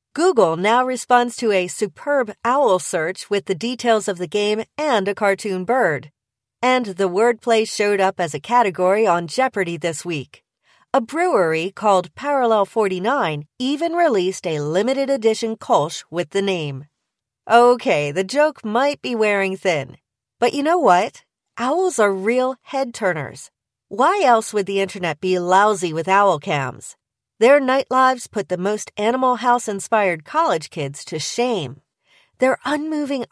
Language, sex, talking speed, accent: English, female, 150 wpm, American